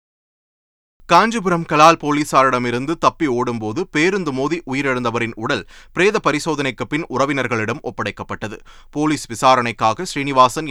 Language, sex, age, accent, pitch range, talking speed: Tamil, male, 30-49, native, 115-165 Hz, 95 wpm